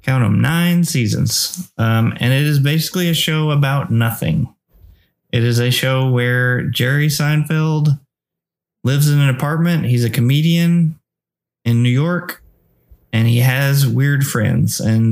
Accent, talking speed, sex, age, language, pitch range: American, 145 wpm, male, 20-39, English, 115-140 Hz